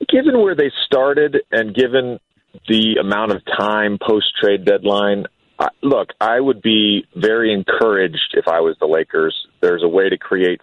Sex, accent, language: male, American, English